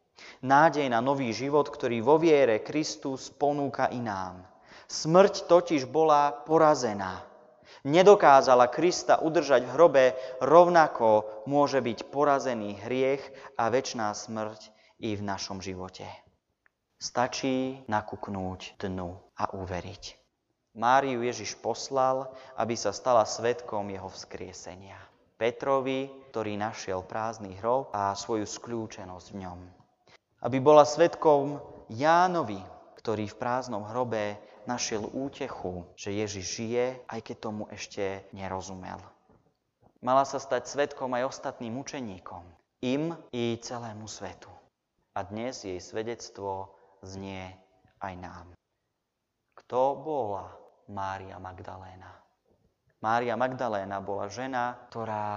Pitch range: 100-135 Hz